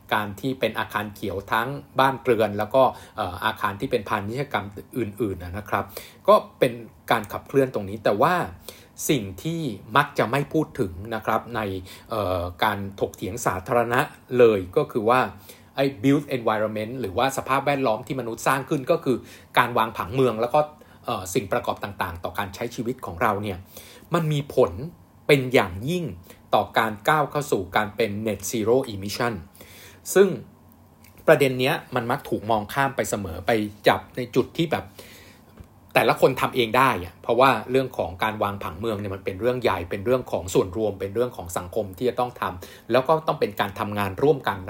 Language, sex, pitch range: Thai, male, 100-130 Hz